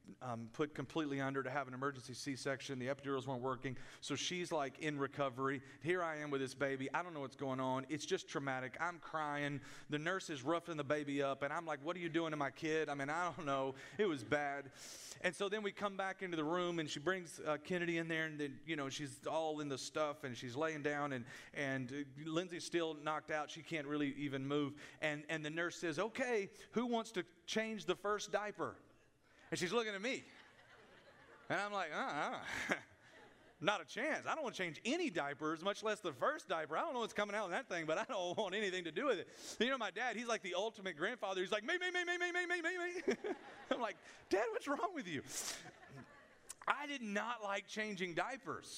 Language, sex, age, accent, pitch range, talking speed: English, male, 40-59, American, 140-200 Hz, 235 wpm